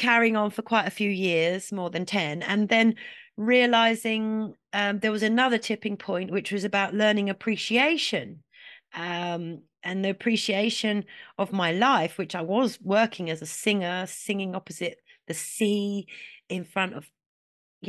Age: 40-59